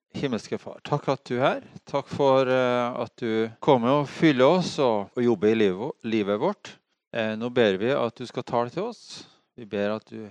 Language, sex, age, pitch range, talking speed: English, male, 30-49, 110-145 Hz, 190 wpm